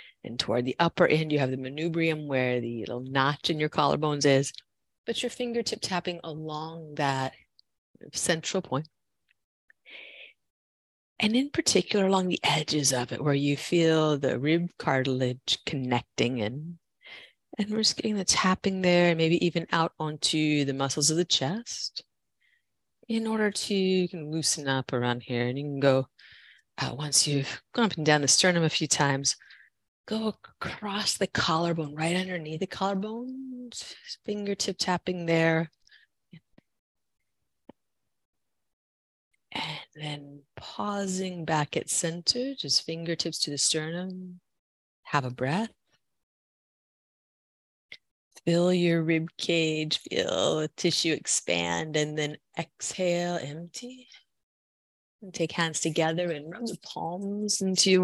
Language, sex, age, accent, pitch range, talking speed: English, female, 30-49, American, 140-180 Hz, 135 wpm